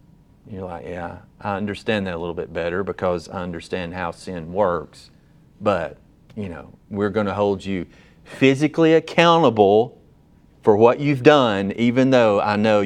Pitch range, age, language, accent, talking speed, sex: 95-125 Hz, 40-59, English, American, 160 wpm, male